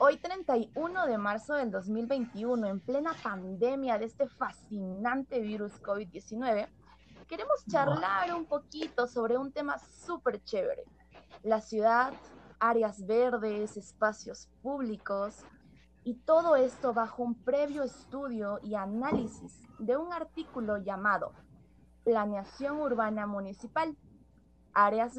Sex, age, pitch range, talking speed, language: female, 20-39, 215-290 Hz, 110 wpm, Spanish